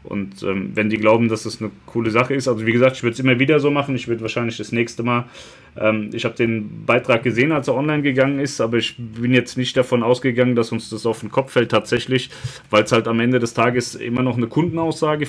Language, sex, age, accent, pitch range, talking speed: German, male, 30-49, German, 110-125 Hz, 250 wpm